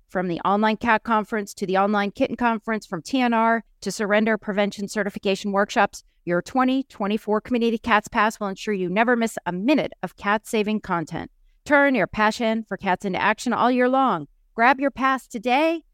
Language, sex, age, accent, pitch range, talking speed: English, female, 40-59, American, 180-235 Hz, 175 wpm